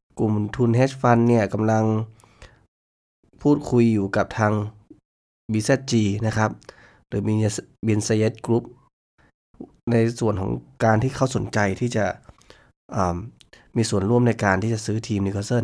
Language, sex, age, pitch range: Thai, male, 20-39, 100-120 Hz